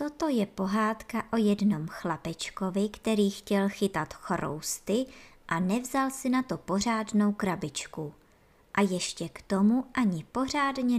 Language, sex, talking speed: Czech, male, 125 wpm